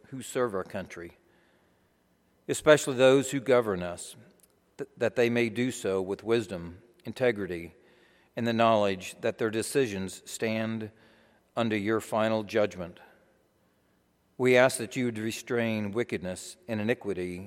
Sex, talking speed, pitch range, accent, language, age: male, 125 wpm, 90-120 Hz, American, English, 60-79